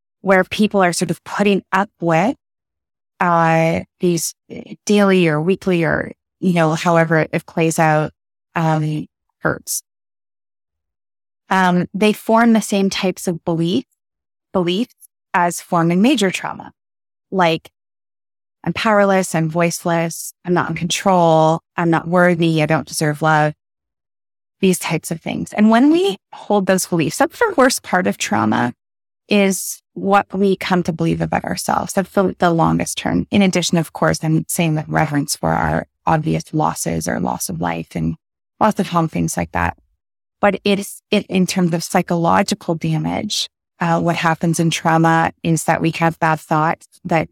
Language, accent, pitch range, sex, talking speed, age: English, American, 155-190 Hz, female, 155 wpm, 20-39